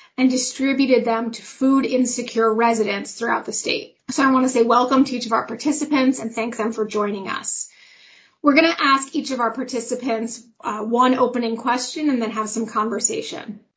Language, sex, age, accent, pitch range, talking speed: English, female, 30-49, American, 220-255 Hz, 185 wpm